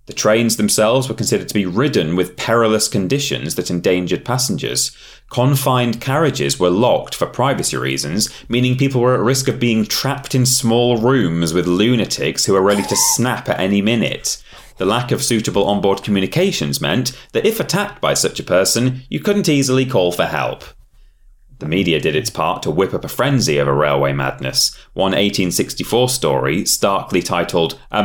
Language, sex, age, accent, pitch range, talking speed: English, male, 30-49, British, 100-135 Hz, 175 wpm